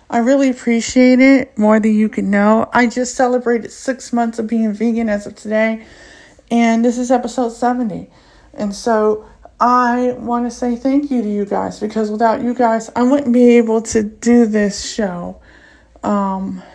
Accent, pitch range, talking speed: American, 220-270 Hz, 175 wpm